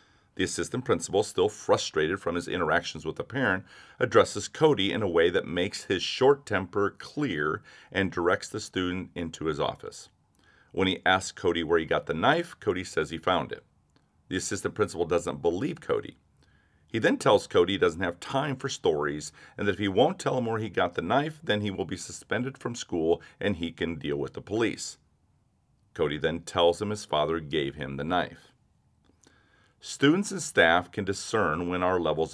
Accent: American